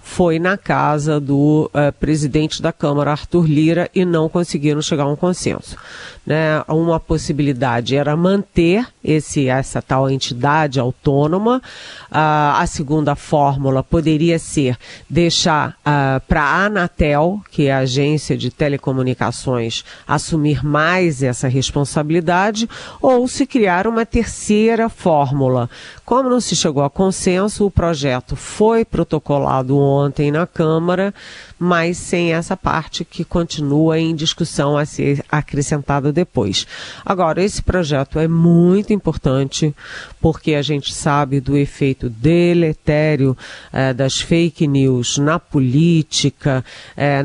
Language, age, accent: Portuguese, 40-59, Brazilian